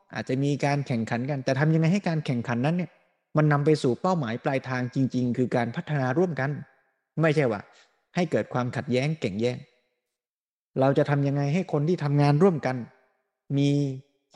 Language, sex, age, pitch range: Thai, male, 20-39, 125-160 Hz